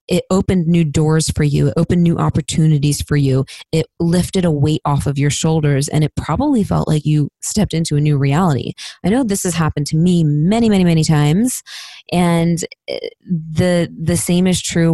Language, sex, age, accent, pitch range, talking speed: English, female, 20-39, American, 150-180 Hz, 195 wpm